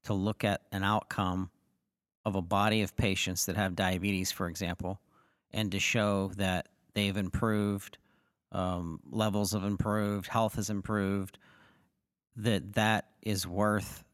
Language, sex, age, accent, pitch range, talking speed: English, male, 40-59, American, 95-110 Hz, 135 wpm